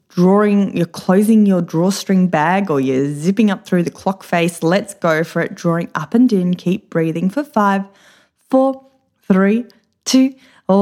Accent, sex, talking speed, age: Australian, female, 160 wpm, 20-39